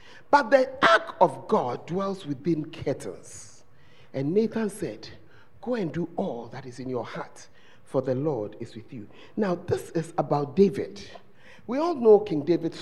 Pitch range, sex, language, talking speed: 175-255 Hz, male, English, 170 wpm